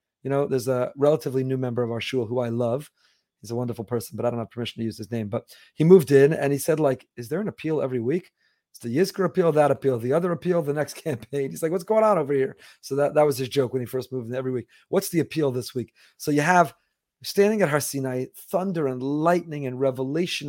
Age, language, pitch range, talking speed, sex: 30-49, English, 130-180 Hz, 260 wpm, male